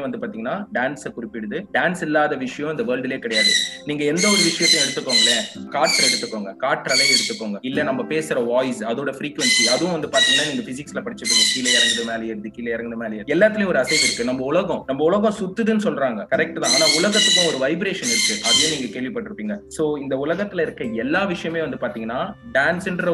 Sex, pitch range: male, 130-200 Hz